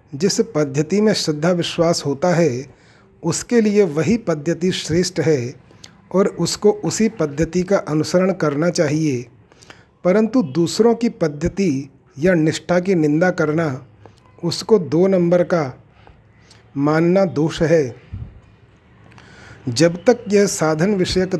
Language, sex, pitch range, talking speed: Hindi, male, 150-190 Hz, 120 wpm